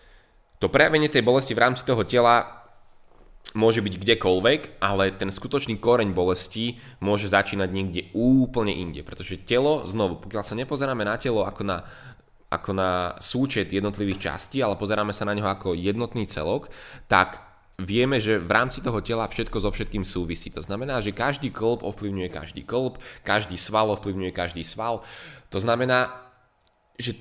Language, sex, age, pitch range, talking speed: Slovak, male, 20-39, 95-125 Hz, 155 wpm